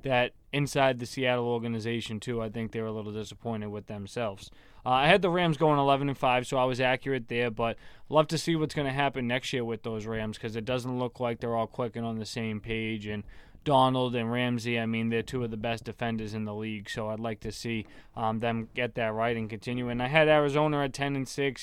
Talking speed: 245 wpm